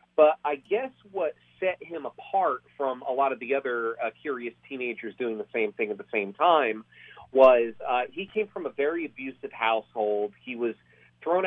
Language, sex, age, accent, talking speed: English, male, 30-49, American, 190 wpm